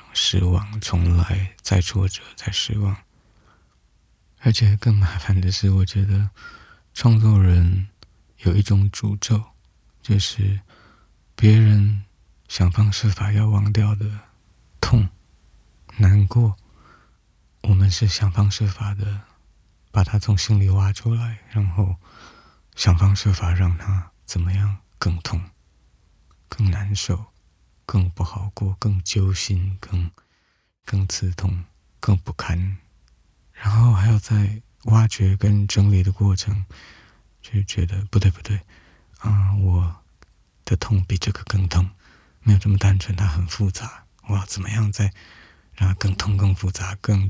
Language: Chinese